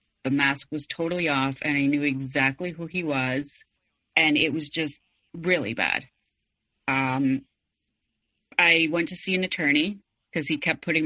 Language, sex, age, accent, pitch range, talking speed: English, female, 30-49, American, 140-170 Hz, 155 wpm